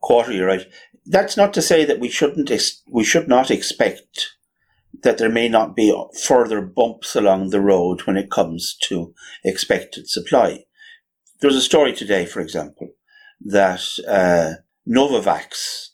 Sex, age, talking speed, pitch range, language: male, 60-79, 150 wpm, 95-135 Hz, English